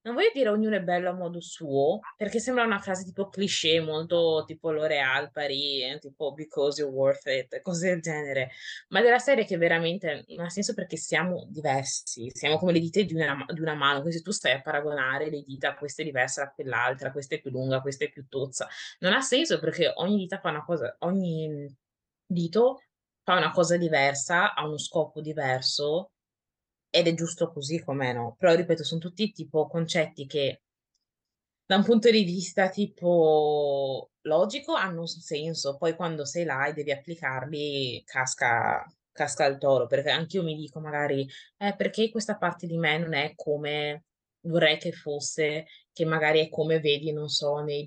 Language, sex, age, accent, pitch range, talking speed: Italian, female, 20-39, native, 145-175 Hz, 185 wpm